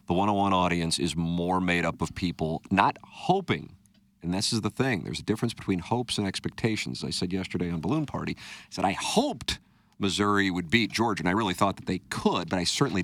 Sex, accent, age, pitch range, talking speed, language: male, American, 40-59, 80-100 Hz, 215 wpm, English